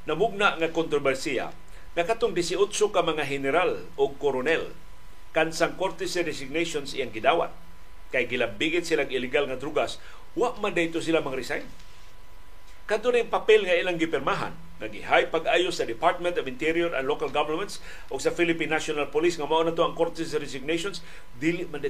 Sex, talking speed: male, 155 wpm